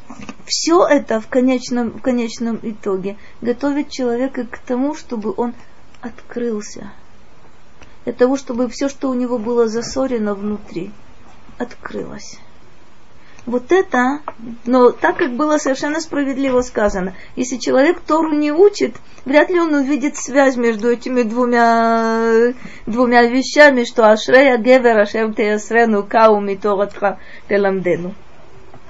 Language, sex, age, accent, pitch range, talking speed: Russian, female, 20-39, native, 220-265 Hz, 120 wpm